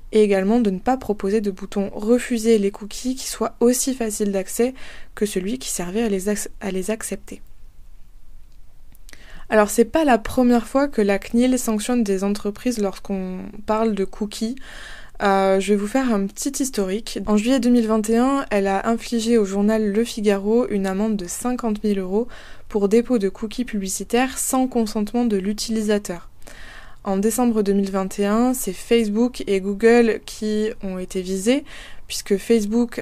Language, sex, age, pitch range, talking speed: French, female, 20-39, 200-235 Hz, 165 wpm